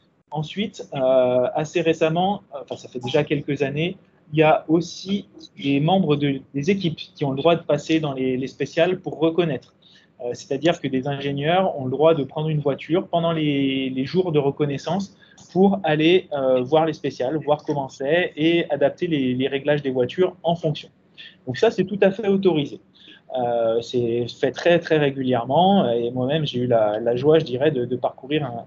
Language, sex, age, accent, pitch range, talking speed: French, male, 20-39, French, 130-165 Hz, 195 wpm